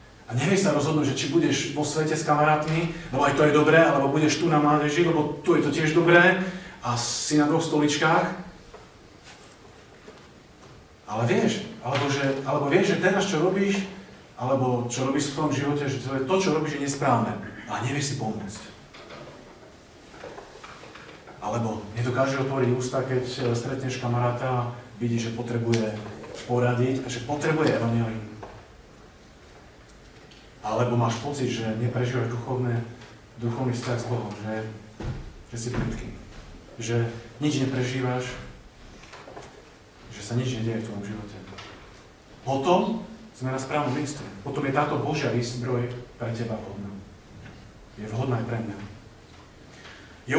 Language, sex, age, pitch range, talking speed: Slovak, male, 40-59, 115-150 Hz, 140 wpm